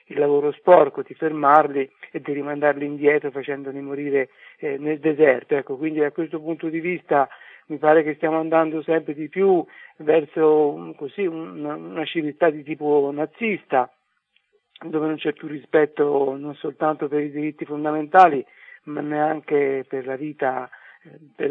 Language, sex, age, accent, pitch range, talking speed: Italian, male, 50-69, native, 135-160 Hz, 135 wpm